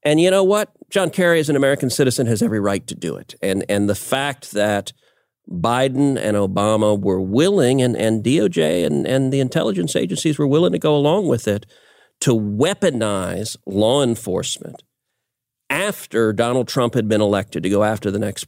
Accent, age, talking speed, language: American, 40-59, 180 wpm, English